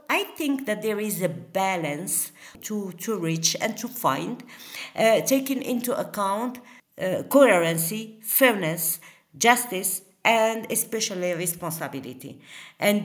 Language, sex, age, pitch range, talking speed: English, female, 50-69, 185-250 Hz, 115 wpm